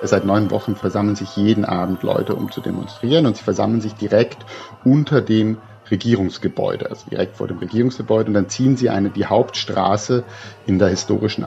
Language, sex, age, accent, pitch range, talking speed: German, male, 50-69, German, 100-135 Hz, 180 wpm